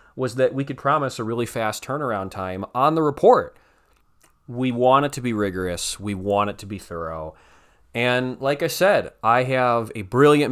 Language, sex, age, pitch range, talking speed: English, male, 30-49, 100-140 Hz, 190 wpm